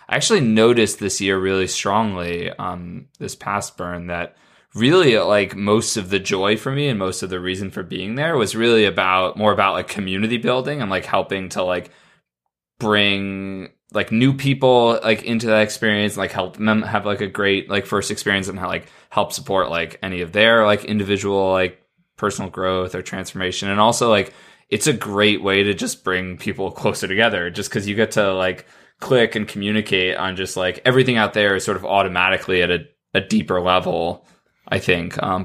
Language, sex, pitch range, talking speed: English, male, 90-110 Hz, 195 wpm